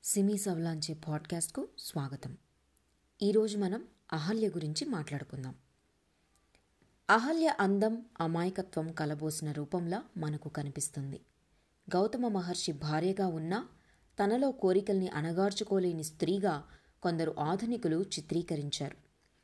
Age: 20-39